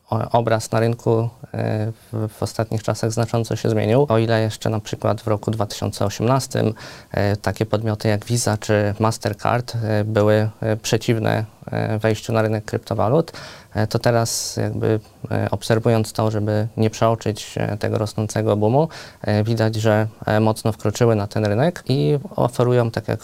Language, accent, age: Polish, native, 20-39